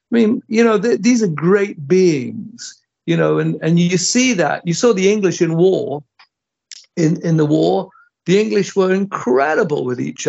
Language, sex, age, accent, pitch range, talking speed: English, male, 60-79, British, 145-185 Hz, 185 wpm